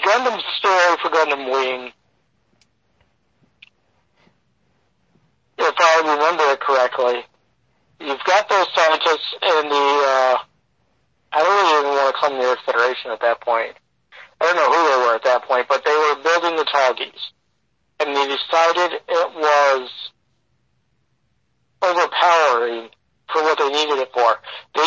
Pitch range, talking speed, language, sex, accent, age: 130-165 Hz, 140 wpm, English, male, American, 50-69